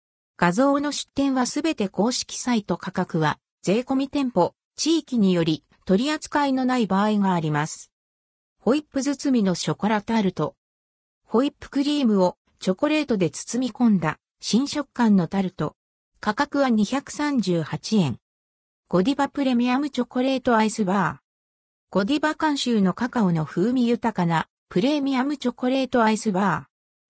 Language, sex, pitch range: Japanese, female, 175-270 Hz